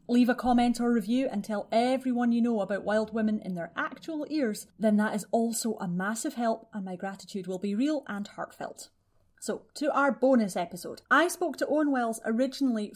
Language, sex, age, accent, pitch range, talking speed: English, female, 30-49, British, 185-235 Hz, 200 wpm